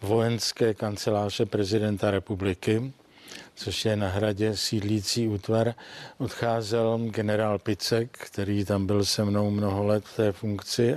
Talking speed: 125 wpm